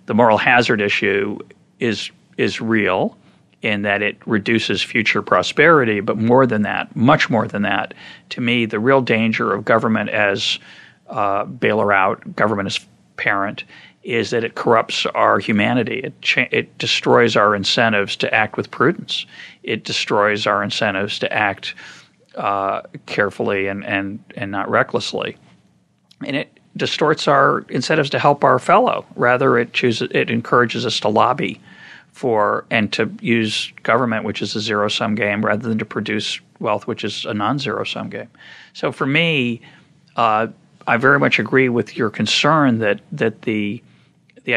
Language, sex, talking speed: English, male, 155 wpm